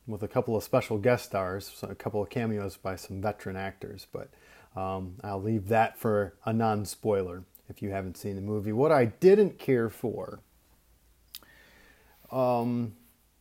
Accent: American